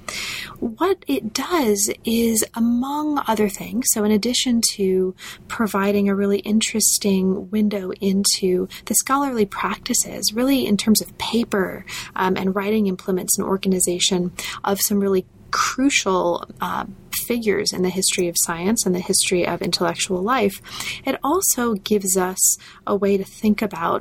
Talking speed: 140 wpm